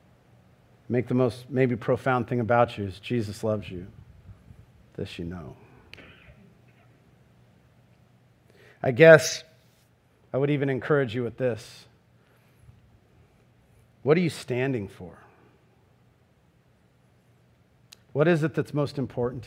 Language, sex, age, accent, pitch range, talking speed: English, male, 50-69, American, 130-195 Hz, 110 wpm